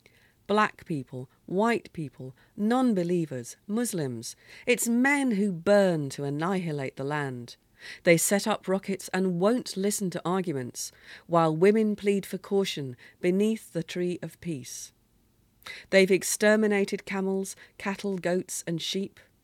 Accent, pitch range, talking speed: British, 145-205 Hz, 125 wpm